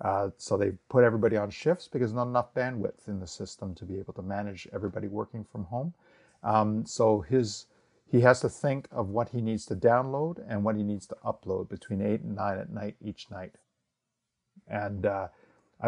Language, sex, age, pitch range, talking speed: French, male, 50-69, 100-120 Hz, 195 wpm